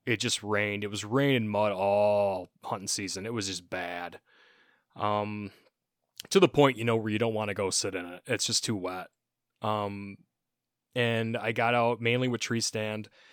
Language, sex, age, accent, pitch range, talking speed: English, male, 20-39, American, 100-115 Hz, 195 wpm